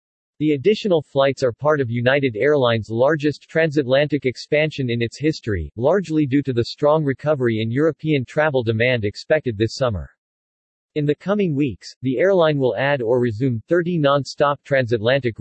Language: English